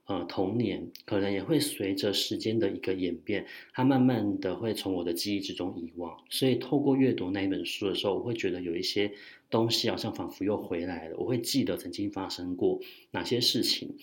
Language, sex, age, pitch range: Chinese, male, 30-49, 95-135 Hz